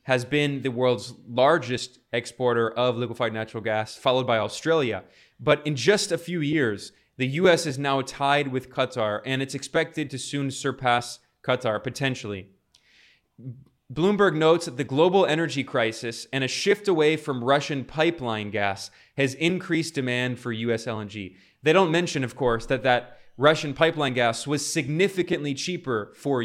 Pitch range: 120-155 Hz